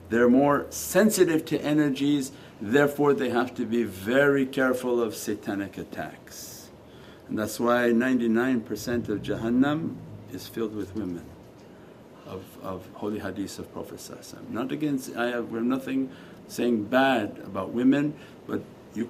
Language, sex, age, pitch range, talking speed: English, male, 50-69, 115-155 Hz, 140 wpm